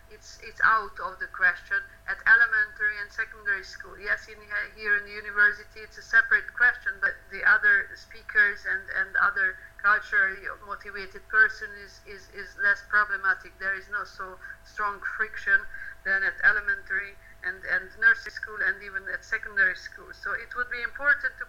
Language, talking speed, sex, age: Hungarian, 170 wpm, female, 50-69